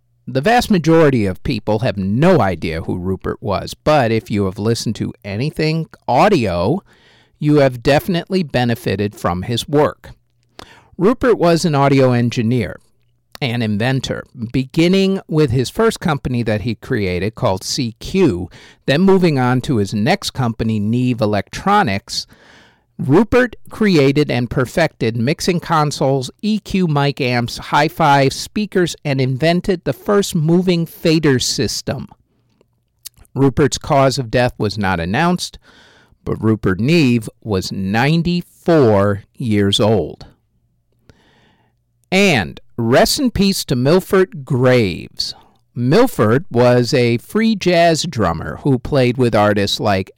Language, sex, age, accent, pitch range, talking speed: English, male, 50-69, American, 110-160 Hz, 125 wpm